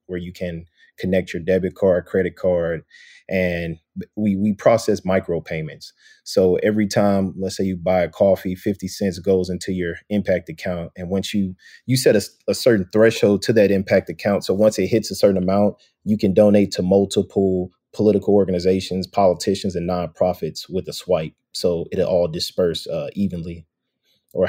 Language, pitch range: English, 90-105 Hz